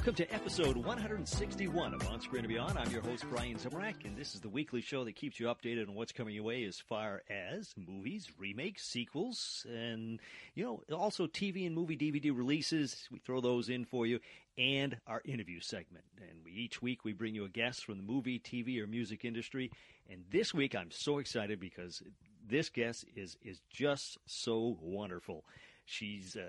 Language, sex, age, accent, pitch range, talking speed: English, male, 40-59, American, 105-140 Hz, 195 wpm